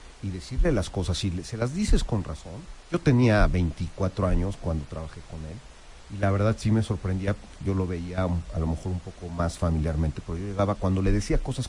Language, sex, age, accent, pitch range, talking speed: Spanish, male, 40-59, Mexican, 85-115 Hz, 210 wpm